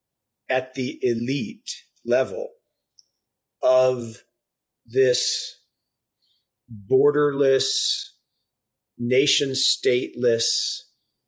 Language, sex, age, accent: English, male, 40-59, American